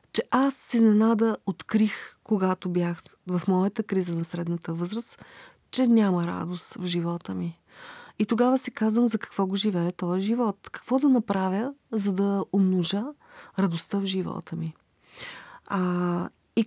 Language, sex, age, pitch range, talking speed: Bulgarian, female, 40-59, 180-225 Hz, 145 wpm